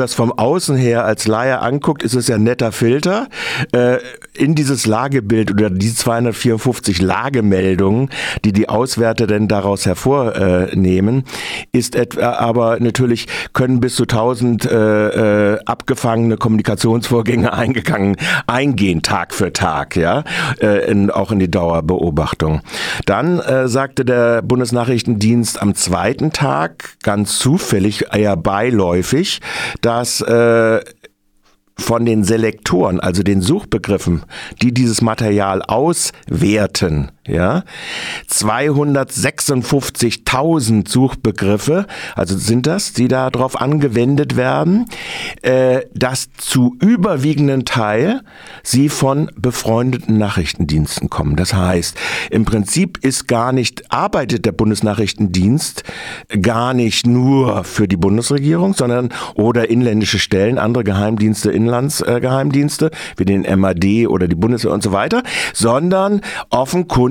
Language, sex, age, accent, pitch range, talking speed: German, male, 50-69, German, 105-130 Hz, 115 wpm